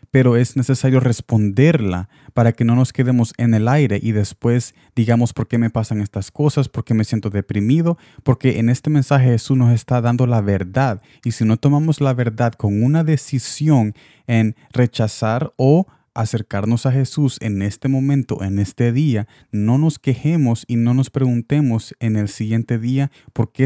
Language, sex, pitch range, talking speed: Spanish, male, 110-130 Hz, 180 wpm